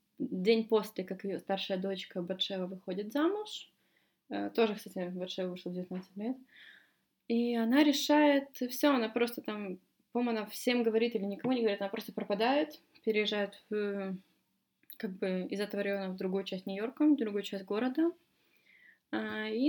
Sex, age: female, 20-39